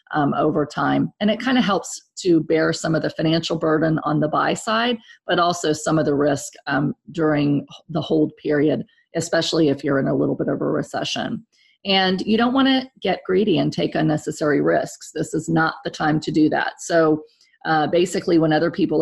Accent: American